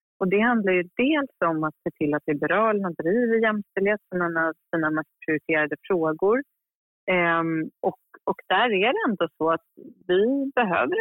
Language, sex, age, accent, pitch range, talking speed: Swedish, female, 30-49, native, 155-215 Hz, 155 wpm